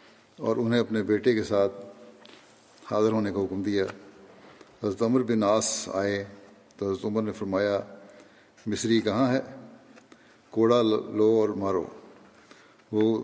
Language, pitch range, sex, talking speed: Urdu, 100-115 Hz, male, 125 wpm